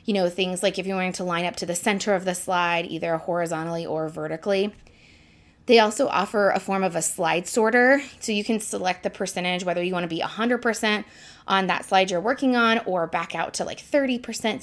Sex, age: female, 20-39